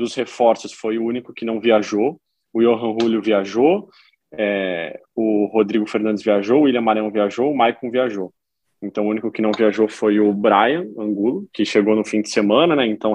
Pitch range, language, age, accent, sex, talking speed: 110-125 Hz, Portuguese, 20-39, Brazilian, male, 190 wpm